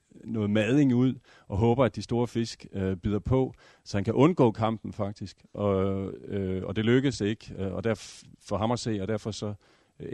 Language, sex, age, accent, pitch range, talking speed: Danish, male, 40-59, native, 100-115 Hz, 195 wpm